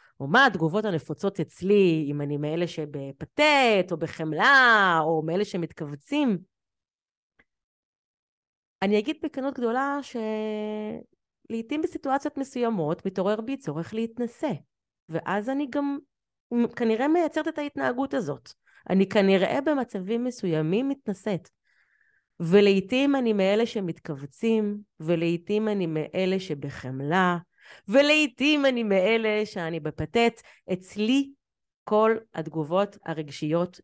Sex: female